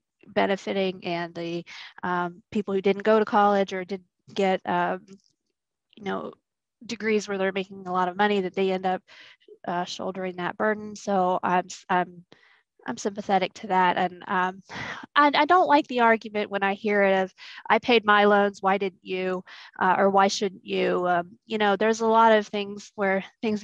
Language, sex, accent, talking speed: English, female, American, 190 wpm